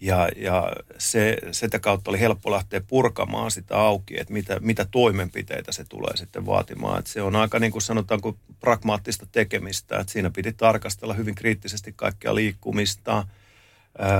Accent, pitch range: native, 95-110 Hz